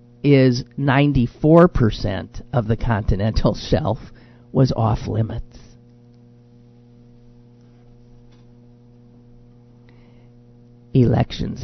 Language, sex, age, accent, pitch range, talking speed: English, male, 50-69, American, 120-140 Hz, 50 wpm